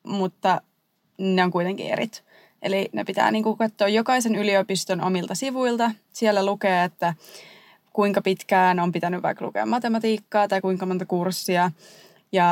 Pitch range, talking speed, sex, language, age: 185-210 Hz, 135 wpm, female, Finnish, 20-39